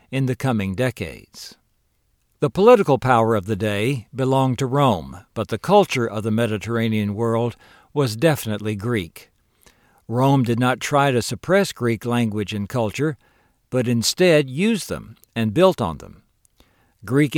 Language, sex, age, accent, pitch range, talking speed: English, male, 60-79, American, 115-150 Hz, 145 wpm